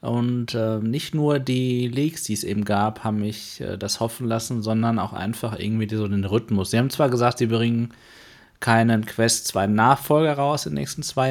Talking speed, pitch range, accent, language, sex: 200 wpm, 115-145 Hz, German, German, male